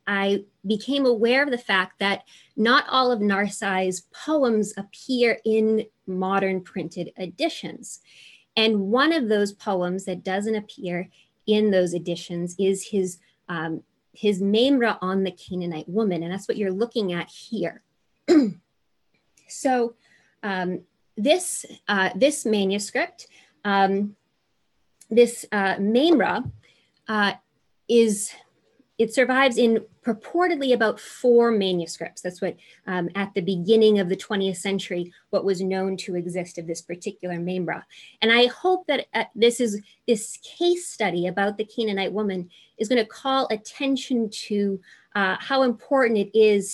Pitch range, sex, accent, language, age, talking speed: 185-230 Hz, female, American, English, 30-49, 135 wpm